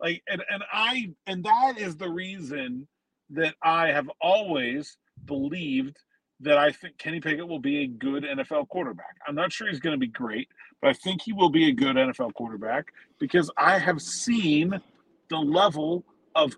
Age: 40-59